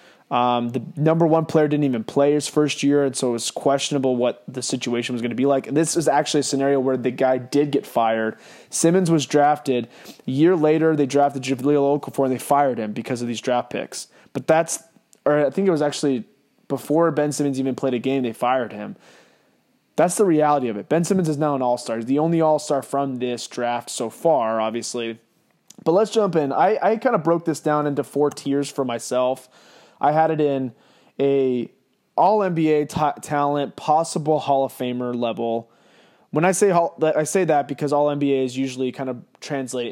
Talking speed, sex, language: 205 wpm, male, English